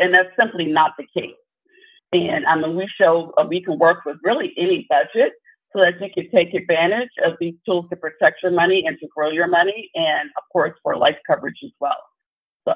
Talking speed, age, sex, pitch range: 215 wpm, 50-69, female, 160-235 Hz